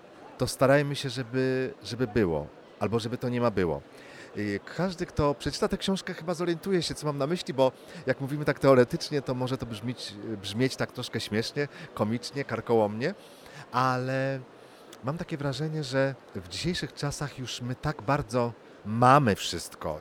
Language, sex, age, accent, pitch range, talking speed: Polish, male, 40-59, native, 105-140 Hz, 155 wpm